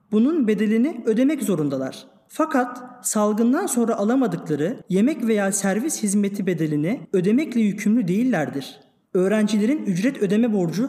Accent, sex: native, male